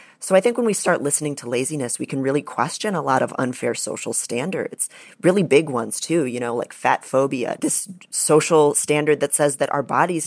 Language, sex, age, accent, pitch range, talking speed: English, female, 30-49, American, 130-165 Hz, 210 wpm